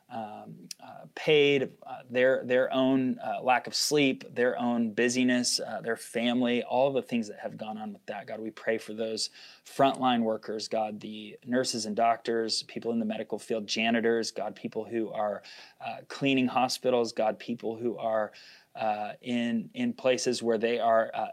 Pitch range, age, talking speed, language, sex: 110-130 Hz, 20-39, 175 wpm, English, male